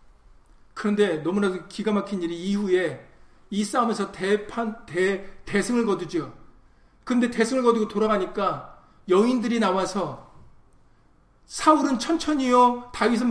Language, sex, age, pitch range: Korean, male, 40-59, 205-275 Hz